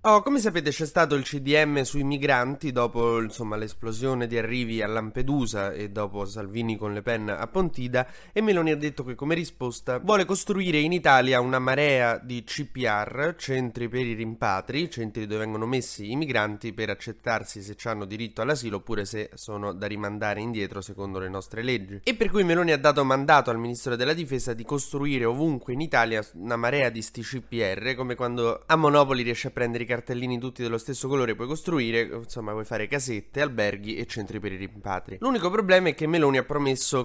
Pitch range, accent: 110-145 Hz, native